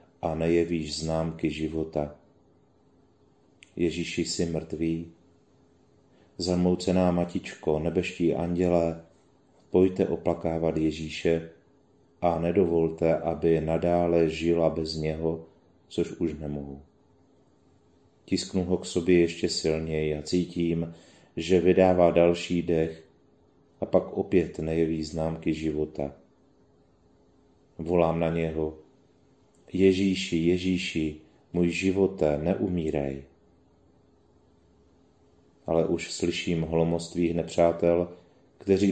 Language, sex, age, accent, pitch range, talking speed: Czech, male, 30-49, native, 80-85 Hz, 90 wpm